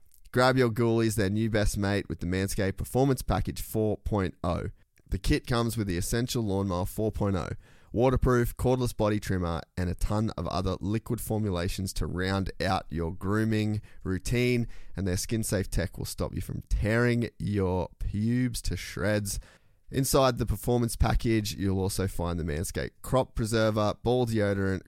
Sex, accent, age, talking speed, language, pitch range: male, Australian, 20-39, 155 wpm, English, 90-110 Hz